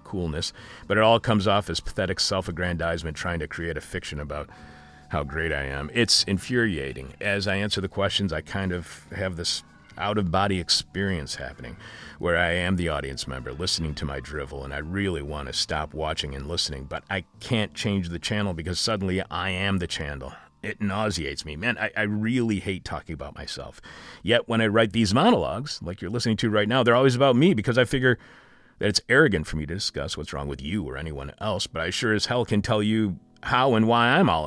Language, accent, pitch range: English, American, 80-115 Hz